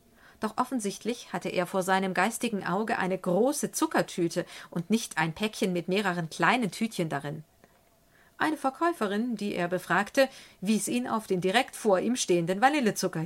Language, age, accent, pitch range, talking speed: German, 40-59, German, 180-245 Hz, 155 wpm